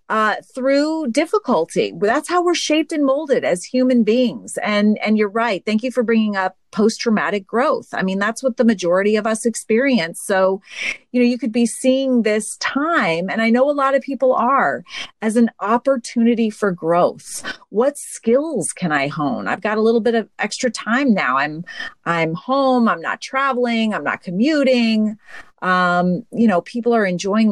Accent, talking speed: American, 180 wpm